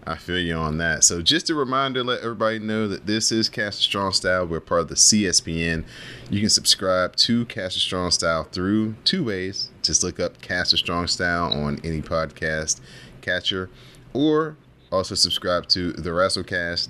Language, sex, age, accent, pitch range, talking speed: English, male, 30-49, American, 80-105 Hz, 185 wpm